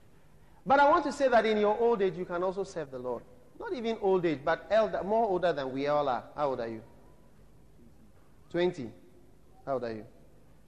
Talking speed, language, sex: 210 wpm, English, male